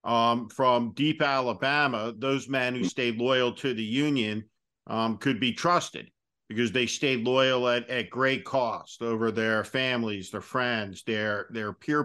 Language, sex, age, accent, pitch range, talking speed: English, male, 50-69, American, 115-135 Hz, 160 wpm